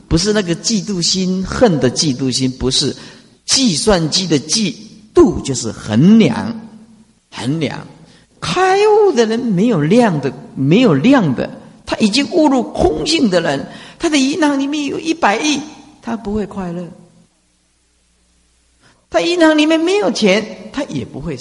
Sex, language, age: male, Chinese, 50-69